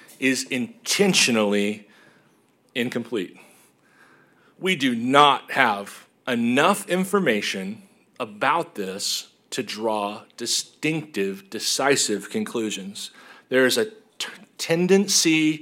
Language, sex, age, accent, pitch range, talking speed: English, male, 40-59, American, 120-175 Hz, 75 wpm